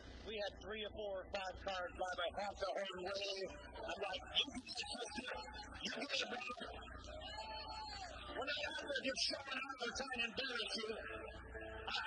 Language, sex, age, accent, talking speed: English, male, 50-69, American, 155 wpm